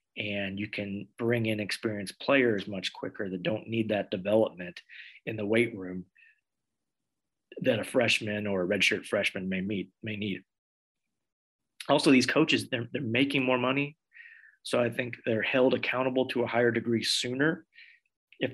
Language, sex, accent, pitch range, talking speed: English, male, American, 110-140 Hz, 160 wpm